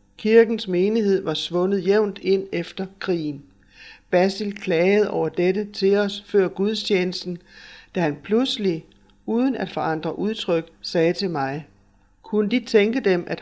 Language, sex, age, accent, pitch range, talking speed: Danish, male, 60-79, native, 155-195 Hz, 140 wpm